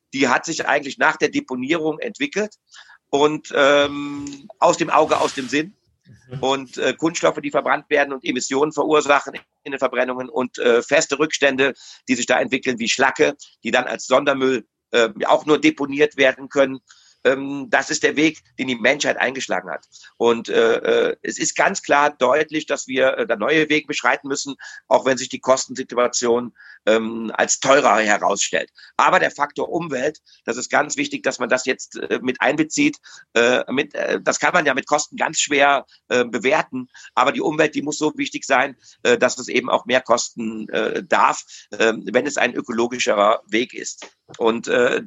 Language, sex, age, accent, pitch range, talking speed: German, male, 50-69, German, 130-155 Hz, 180 wpm